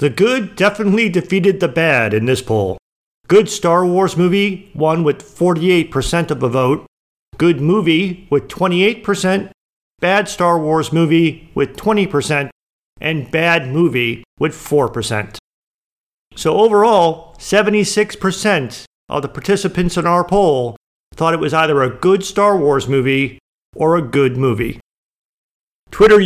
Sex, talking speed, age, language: male, 130 wpm, 40-59, English